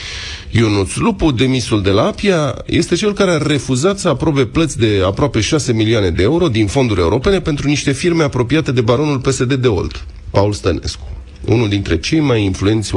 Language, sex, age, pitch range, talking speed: Romanian, male, 30-49, 95-155 Hz, 180 wpm